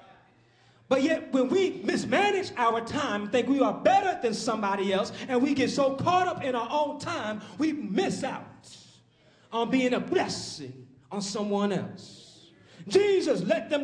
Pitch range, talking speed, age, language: 195-290 Hz, 160 wpm, 30-49, English